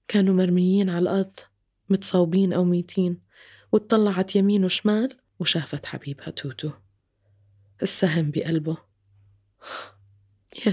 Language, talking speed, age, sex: English, 90 wpm, 20-39, female